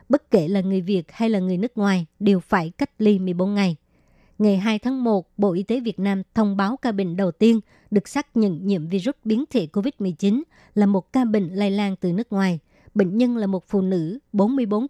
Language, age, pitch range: Vietnamese, 60-79, 195-225 Hz